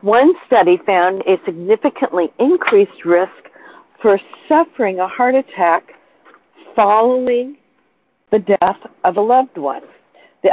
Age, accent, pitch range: 60-79, American, 170-245 Hz